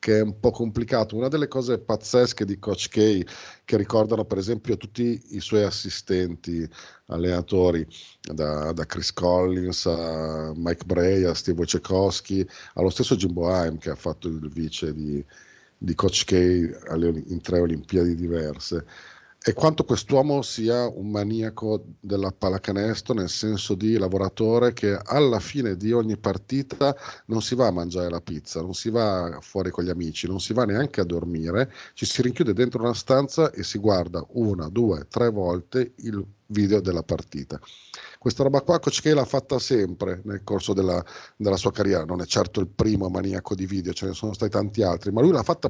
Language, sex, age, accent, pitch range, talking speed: Italian, male, 50-69, native, 90-120 Hz, 175 wpm